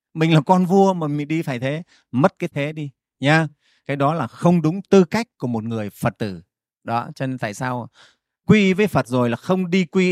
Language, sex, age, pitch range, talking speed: Vietnamese, male, 30-49, 125-175 Hz, 235 wpm